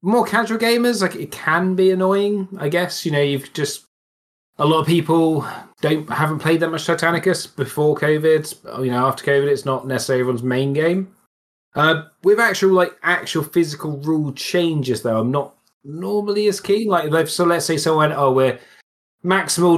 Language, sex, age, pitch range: English, male, 20-39, 125-165 Hz